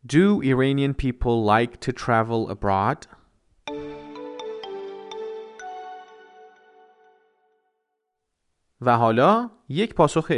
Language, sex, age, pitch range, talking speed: Persian, male, 30-49, 105-150 Hz, 65 wpm